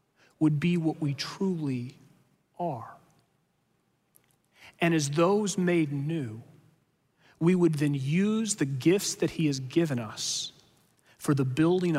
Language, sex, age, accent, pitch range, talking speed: English, male, 40-59, American, 145-180 Hz, 125 wpm